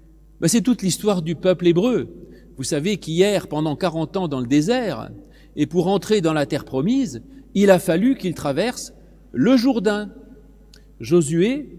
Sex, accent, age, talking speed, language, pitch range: male, French, 40-59, 160 wpm, French, 155-205 Hz